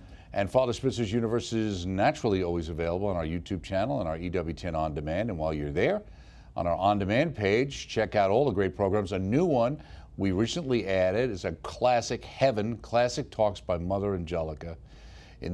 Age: 50-69